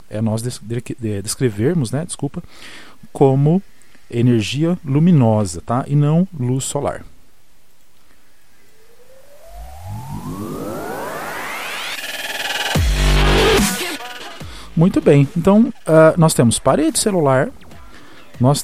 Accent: Brazilian